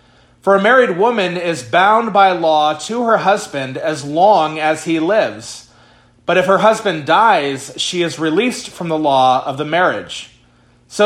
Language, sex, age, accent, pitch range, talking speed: English, male, 30-49, American, 155-200 Hz, 170 wpm